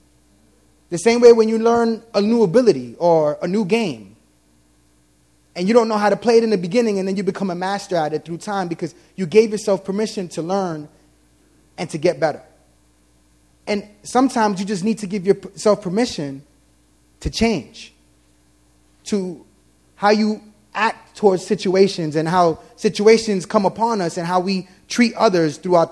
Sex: male